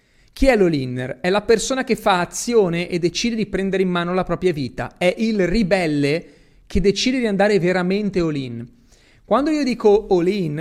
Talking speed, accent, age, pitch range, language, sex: 175 wpm, native, 30-49, 140-195 Hz, Italian, male